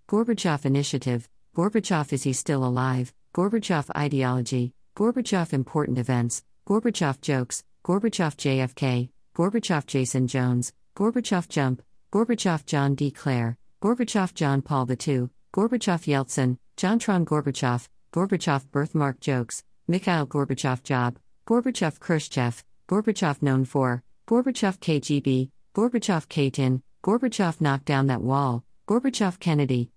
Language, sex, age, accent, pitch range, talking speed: English, female, 50-69, American, 130-200 Hz, 110 wpm